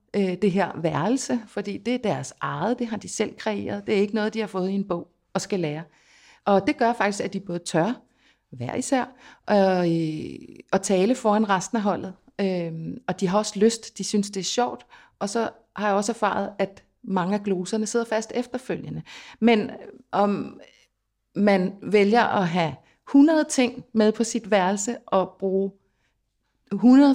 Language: Danish